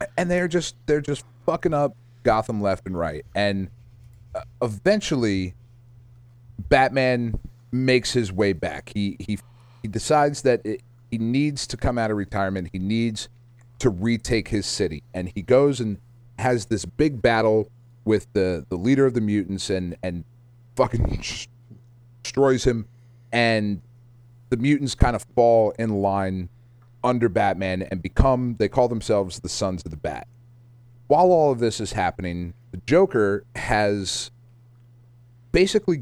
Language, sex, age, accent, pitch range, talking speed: English, male, 30-49, American, 100-125 Hz, 145 wpm